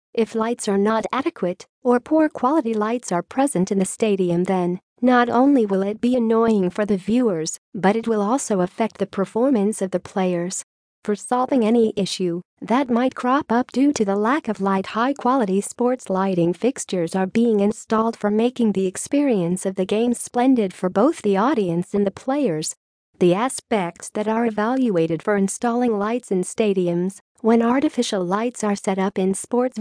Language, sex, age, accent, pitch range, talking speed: English, female, 40-59, American, 190-240 Hz, 180 wpm